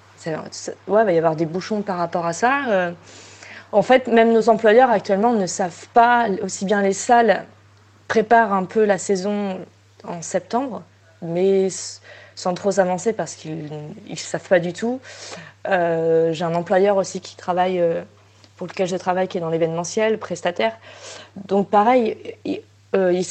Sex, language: female, French